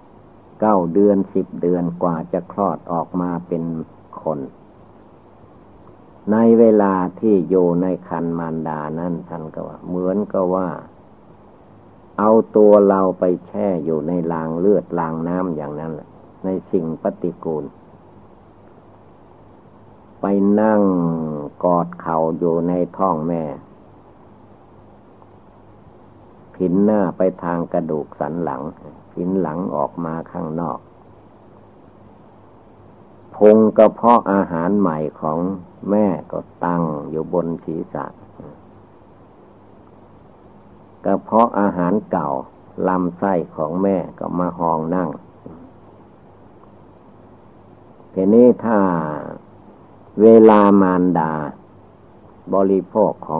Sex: male